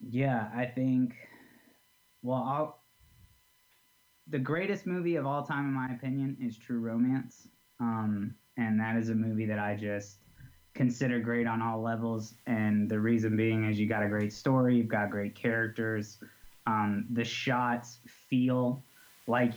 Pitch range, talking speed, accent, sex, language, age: 110-125 Hz, 155 wpm, American, male, English, 20-39